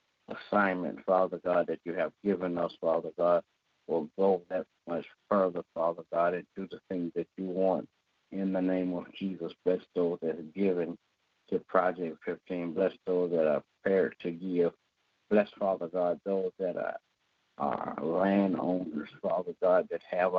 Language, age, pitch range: English, 60-79, 85-95 Hz